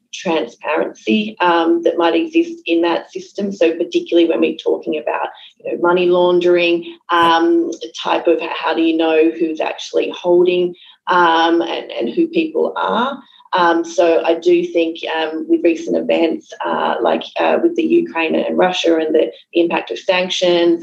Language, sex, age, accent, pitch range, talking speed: English, female, 30-49, Australian, 165-195 Hz, 165 wpm